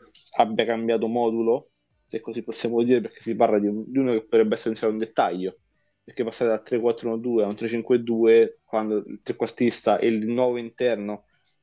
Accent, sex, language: native, male, Italian